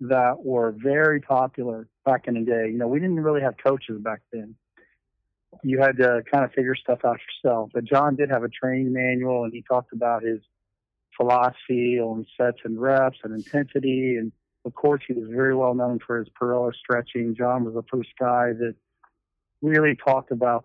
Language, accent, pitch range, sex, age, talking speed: English, American, 115-130 Hz, male, 40-59, 190 wpm